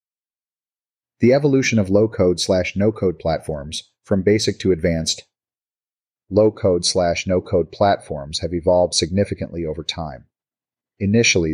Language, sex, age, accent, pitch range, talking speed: English, male, 40-59, American, 85-100 Hz, 105 wpm